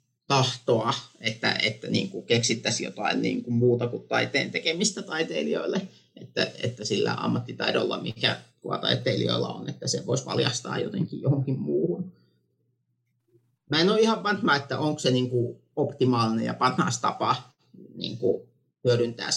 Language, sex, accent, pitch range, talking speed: Finnish, male, native, 120-140 Hz, 135 wpm